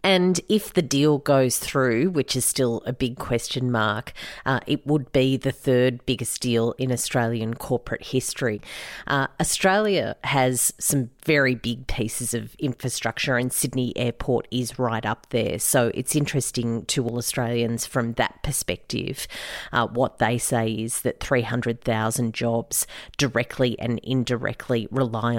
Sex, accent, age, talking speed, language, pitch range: female, Australian, 40-59, 150 wpm, English, 115-135 Hz